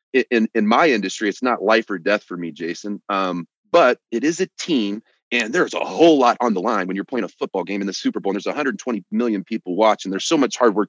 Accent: American